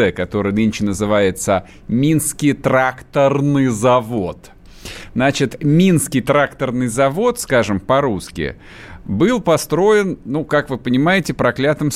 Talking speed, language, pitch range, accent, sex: 95 wpm, Russian, 105-140 Hz, native, male